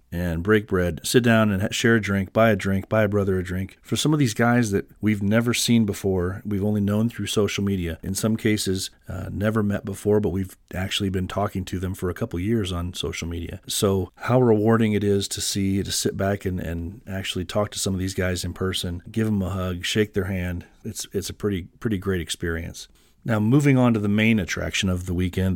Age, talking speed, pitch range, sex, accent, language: 40-59, 230 wpm, 95-115 Hz, male, American, English